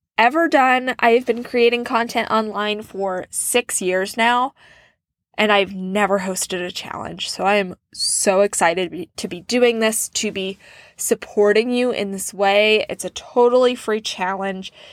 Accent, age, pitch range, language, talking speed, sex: American, 20-39, 200-240 Hz, English, 155 wpm, female